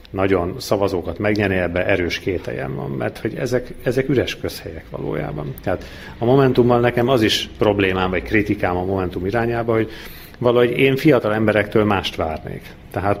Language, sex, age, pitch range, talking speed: Hungarian, male, 40-59, 90-110 Hz, 150 wpm